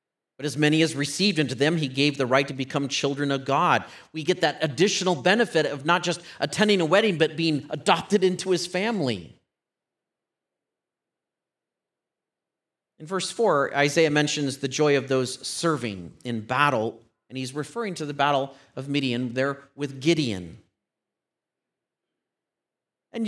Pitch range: 135-175 Hz